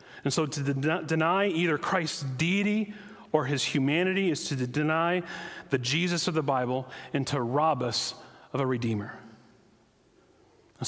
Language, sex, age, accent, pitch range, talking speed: English, male, 40-59, American, 130-150 Hz, 155 wpm